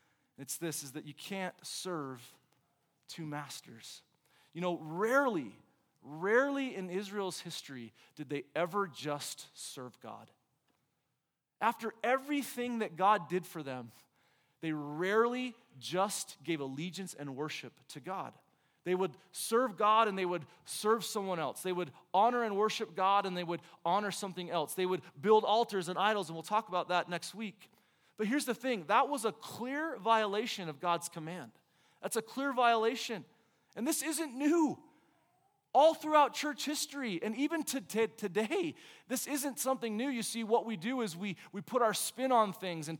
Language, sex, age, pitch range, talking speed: English, male, 30-49, 175-235 Hz, 165 wpm